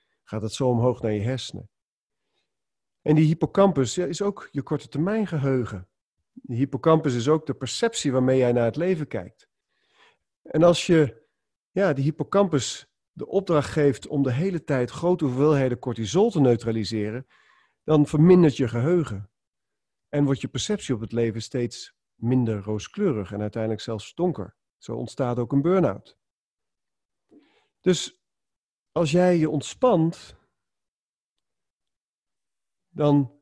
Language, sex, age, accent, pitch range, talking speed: Dutch, male, 40-59, Dutch, 120-155 Hz, 135 wpm